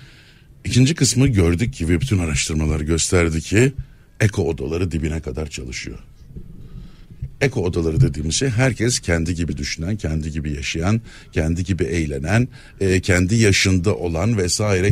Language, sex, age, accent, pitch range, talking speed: Turkish, male, 60-79, native, 90-125 Hz, 125 wpm